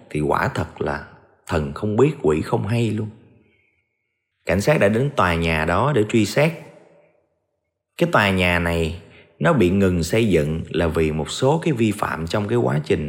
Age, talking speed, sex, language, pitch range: 30-49, 190 wpm, male, Vietnamese, 85-125 Hz